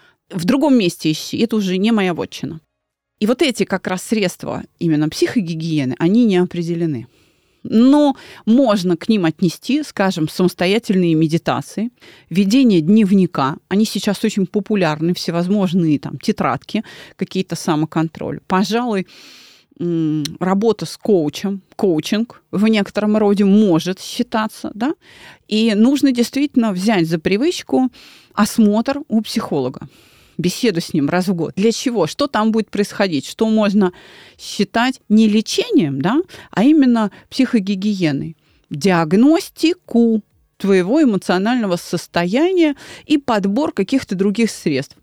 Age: 30-49